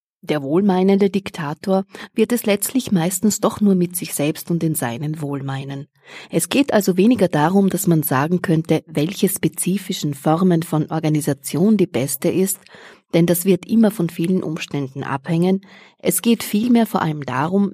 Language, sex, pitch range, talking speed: English, female, 150-200 Hz, 160 wpm